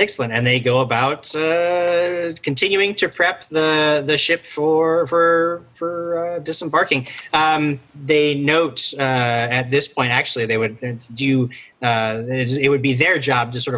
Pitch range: 115-145 Hz